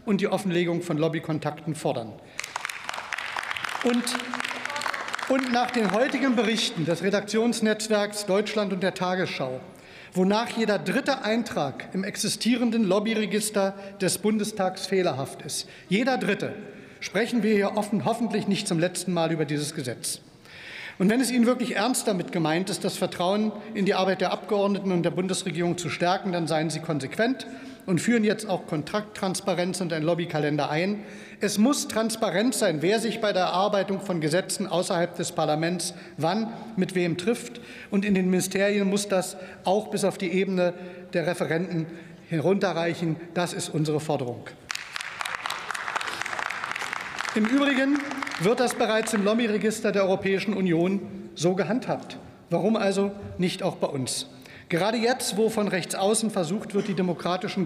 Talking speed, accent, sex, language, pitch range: 145 wpm, German, male, German, 170-215 Hz